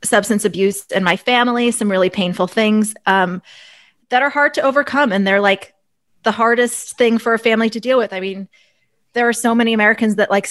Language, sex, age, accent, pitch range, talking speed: English, female, 20-39, American, 185-235 Hz, 205 wpm